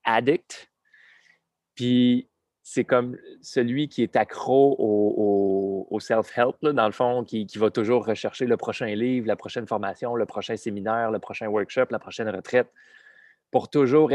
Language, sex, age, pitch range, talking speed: French, male, 20-39, 110-140 Hz, 160 wpm